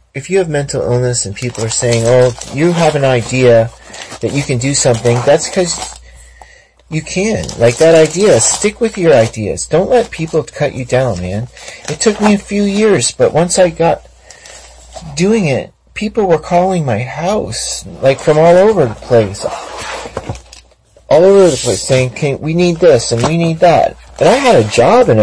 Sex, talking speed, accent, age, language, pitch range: male, 190 wpm, American, 40-59, English, 120-175 Hz